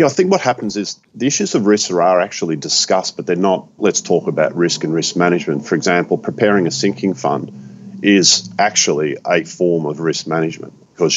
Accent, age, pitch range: Australian, 40-59, 75-95 Hz